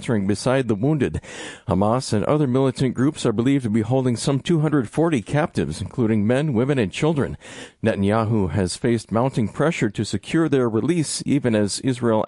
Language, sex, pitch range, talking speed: English, male, 110-140 Hz, 160 wpm